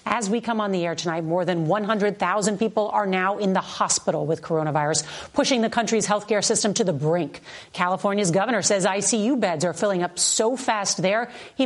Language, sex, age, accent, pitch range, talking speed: English, female, 40-59, American, 175-215 Hz, 200 wpm